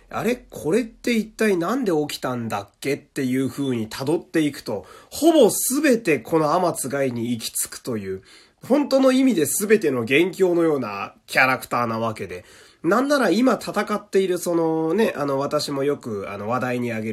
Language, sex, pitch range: Japanese, male, 125-200 Hz